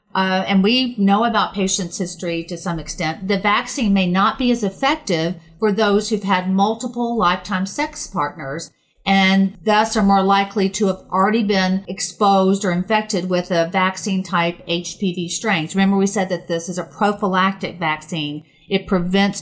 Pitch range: 175-205 Hz